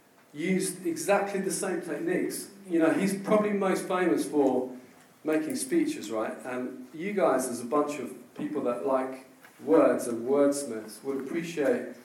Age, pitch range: 40-59, 130-190 Hz